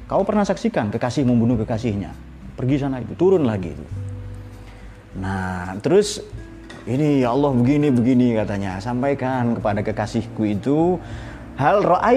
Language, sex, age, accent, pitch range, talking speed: Indonesian, male, 30-49, native, 100-140 Hz, 115 wpm